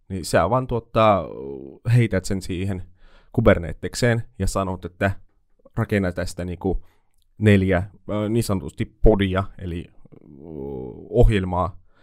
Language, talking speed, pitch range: Finnish, 100 wpm, 90-110 Hz